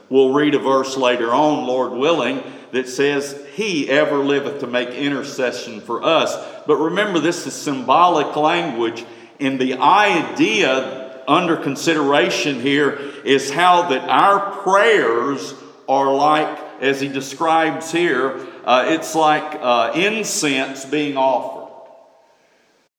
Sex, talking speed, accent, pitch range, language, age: male, 125 wpm, American, 130-160 Hz, English, 50-69